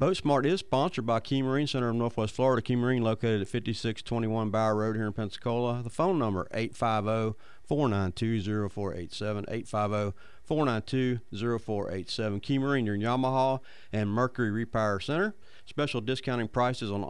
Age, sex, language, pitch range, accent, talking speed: 40-59, male, English, 105-125 Hz, American, 135 wpm